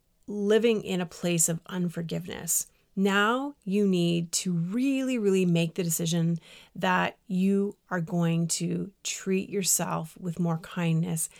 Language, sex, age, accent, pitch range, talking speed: English, female, 30-49, American, 170-200 Hz, 130 wpm